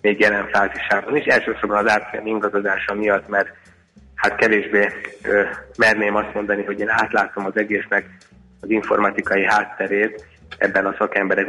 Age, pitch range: 30-49, 100-110 Hz